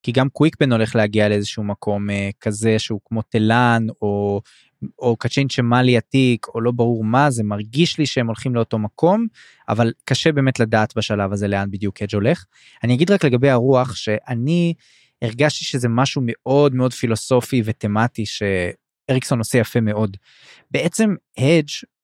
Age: 20-39